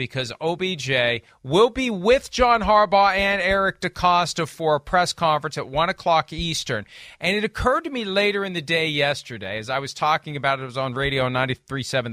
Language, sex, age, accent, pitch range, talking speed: English, male, 40-59, American, 125-175 Hz, 195 wpm